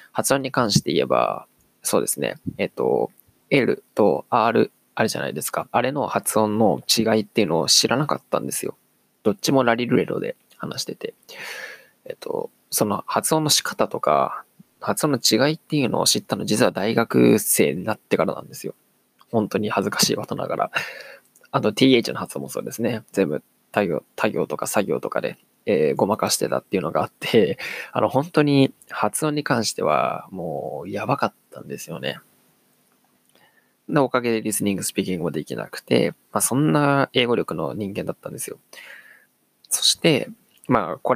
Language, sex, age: Japanese, male, 20-39